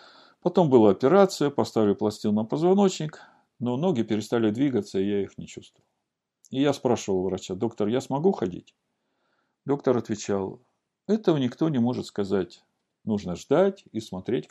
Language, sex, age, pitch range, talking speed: Russian, male, 50-69, 105-150 Hz, 145 wpm